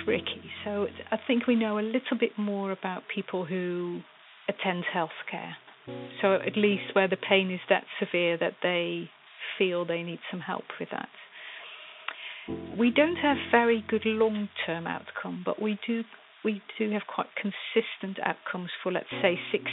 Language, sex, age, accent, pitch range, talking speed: English, female, 40-59, British, 180-215 Hz, 165 wpm